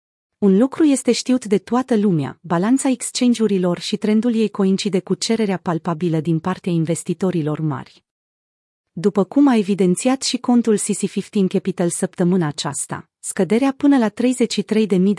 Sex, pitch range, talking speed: female, 175-230 Hz, 140 wpm